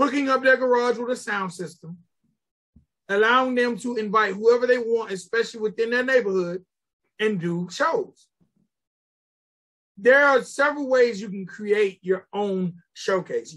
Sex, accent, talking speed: male, American, 140 wpm